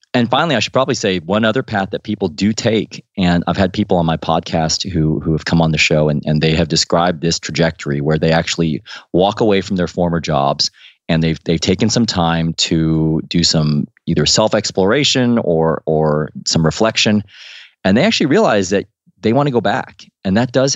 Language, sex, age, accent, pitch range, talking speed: English, male, 30-49, American, 85-110 Hz, 205 wpm